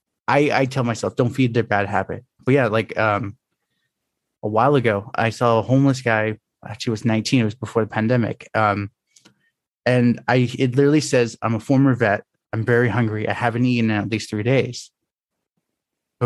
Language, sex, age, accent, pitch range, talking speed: English, male, 20-39, American, 110-135 Hz, 190 wpm